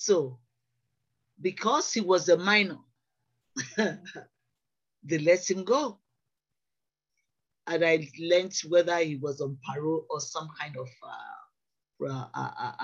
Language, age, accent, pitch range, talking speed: English, 50-69, Nigerian, 160-255 Hz, 110 wpm